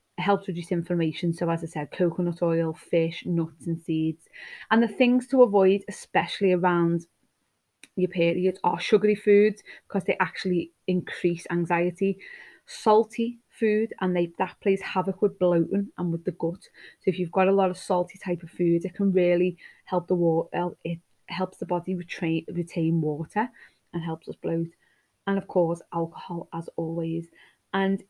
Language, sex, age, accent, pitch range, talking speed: English, female, 20-39, British, 170-195 Hz, 170 wpm